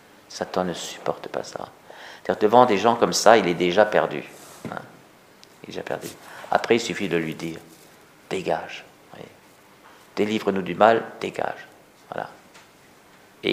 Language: French